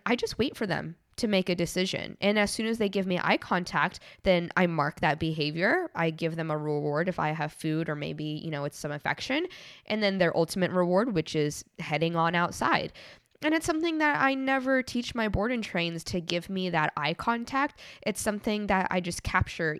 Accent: American